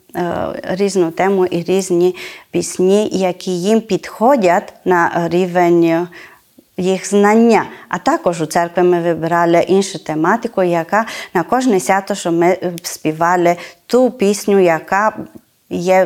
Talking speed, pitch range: 115 wpm, 175-220 Hz